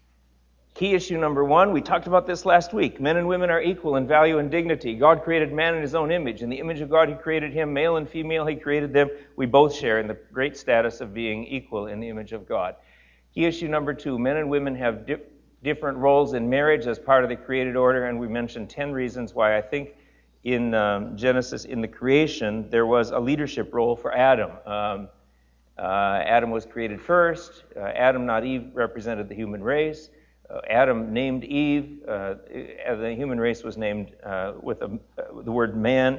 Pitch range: 110-145 Hz